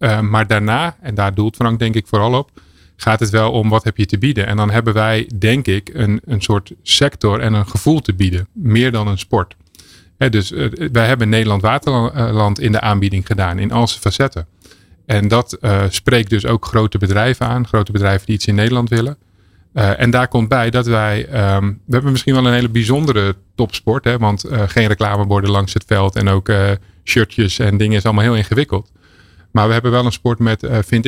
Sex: male